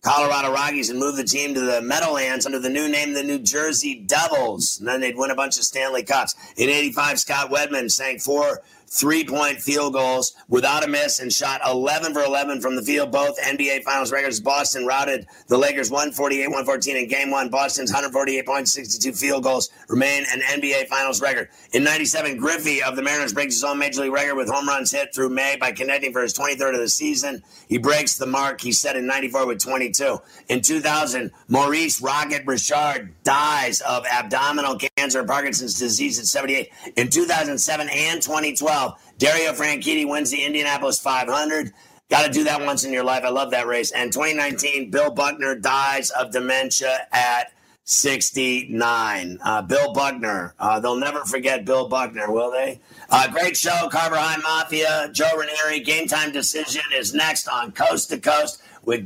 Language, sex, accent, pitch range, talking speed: English, male, American, 130-150 Hz, 180 wpm